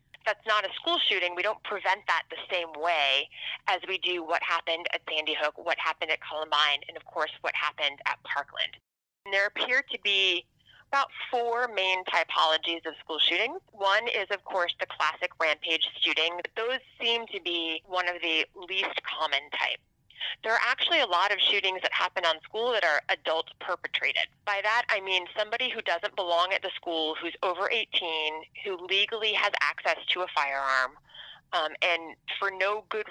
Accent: American